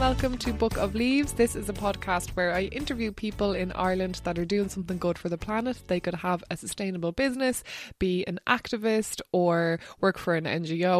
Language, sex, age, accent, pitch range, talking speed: English, female, 20-39, Irish, 175-235 Hz, 200 wpm